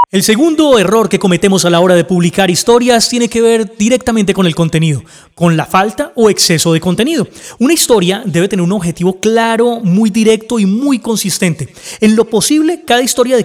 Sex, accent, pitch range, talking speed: male, Colombian, 175-225 Hz, 190 wpm